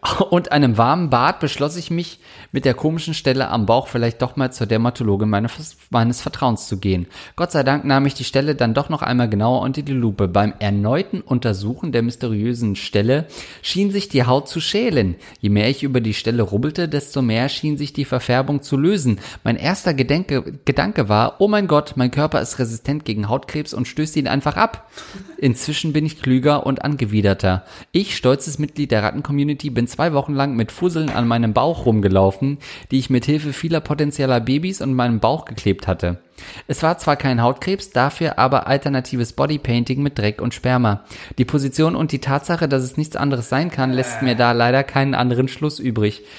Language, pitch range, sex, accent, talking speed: German, 115-150 Hz, male, German, 195 wpm